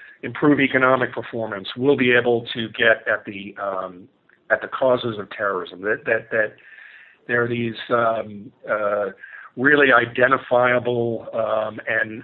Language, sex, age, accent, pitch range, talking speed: English, male, 50-69, American, 105-130 Hz, 135 wpm